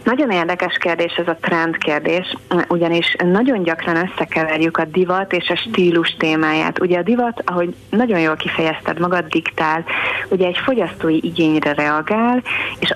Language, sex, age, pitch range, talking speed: Hungarian, female, 30-49, 155-175 Hz, 145 wpm